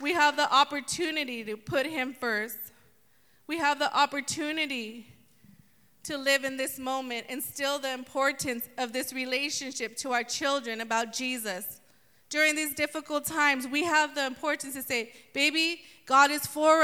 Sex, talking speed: female, 155 wpm